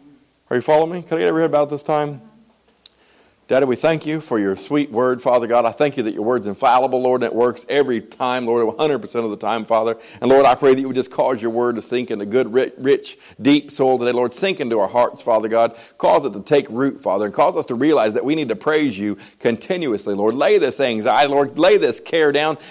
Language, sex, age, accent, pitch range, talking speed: English, male, 40-59, American, 110-150 Hz, 250 wpm